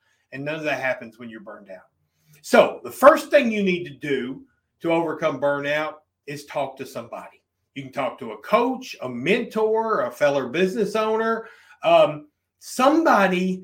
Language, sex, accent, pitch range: English, male, American, 150-210 Hz